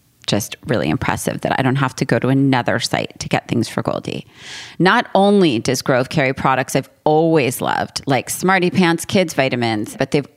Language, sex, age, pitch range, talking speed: English, female, 30-49, 130-160 Hz, 190 wpm